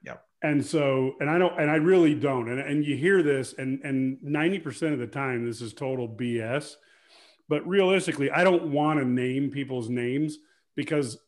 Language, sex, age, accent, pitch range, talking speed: English, male, 40-59, American, 125-150 Hz, 180 wpm